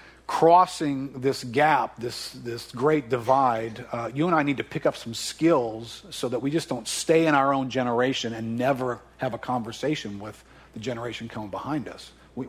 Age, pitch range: 50-69, 125-165 Hz